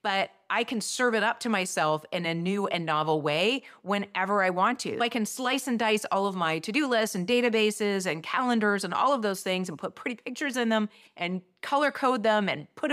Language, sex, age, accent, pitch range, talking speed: English, female, 30-49, American, 180-245 Hz, 230 wpm